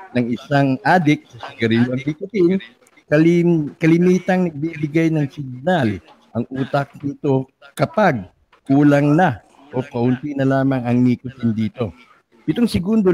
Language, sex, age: English, male, 50-69